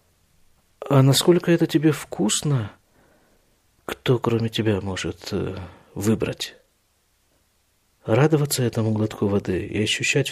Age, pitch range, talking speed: 50-69, 110-160 Hz, 95 wpm